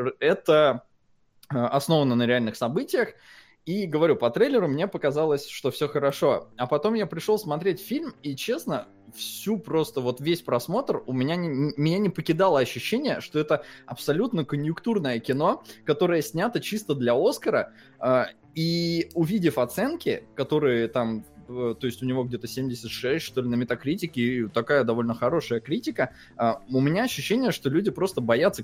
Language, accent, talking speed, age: Russian, native, 150 wpm, 20-39